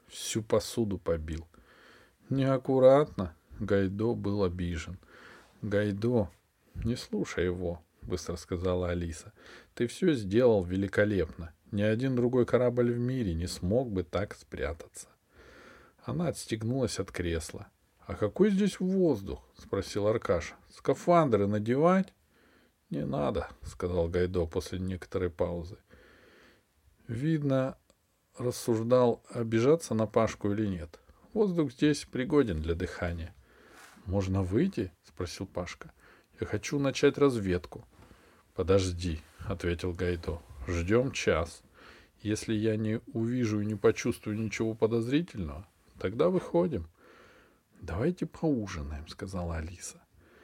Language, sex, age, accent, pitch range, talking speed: Russian, male, 40-59, native, 90-120 Hz, 105 wpm